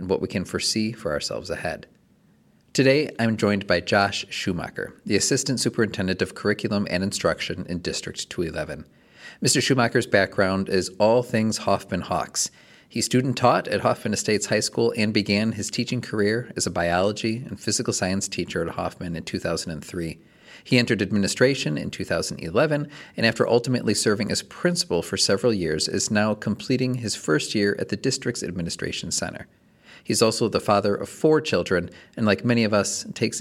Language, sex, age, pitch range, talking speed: English, male, 40-59, 95-125 Hz, 165 wpm